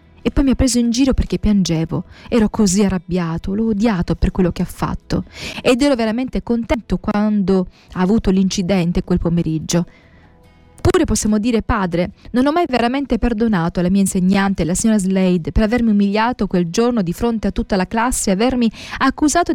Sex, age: female, 20-39